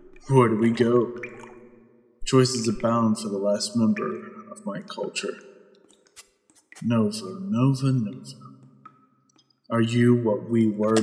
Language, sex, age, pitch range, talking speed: English, male, 30-49, 110-140 Hz, 115 wpm